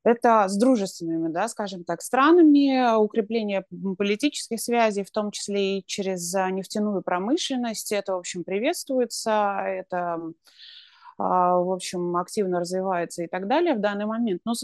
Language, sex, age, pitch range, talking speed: Russian, female, 20-39, 175-215 Hz, 140 wpm